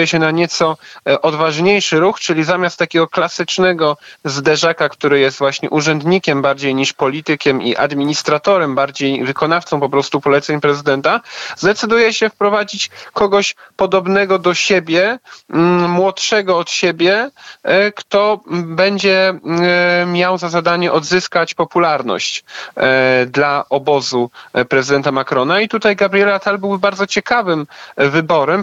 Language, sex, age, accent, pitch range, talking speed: Polish, male, 40-59, native, 140-175 Hz, 115 wpm